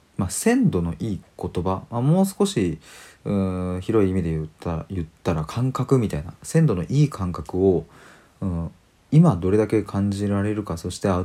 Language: Japanese